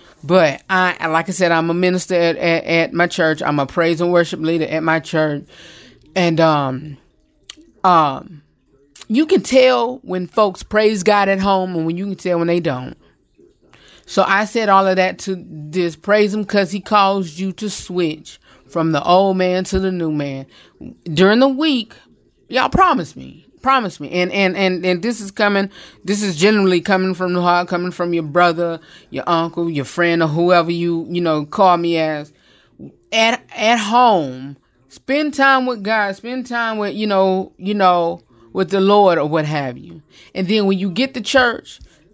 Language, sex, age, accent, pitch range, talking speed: English, female, 30-49, American, 165-205 Hz, 190 wpm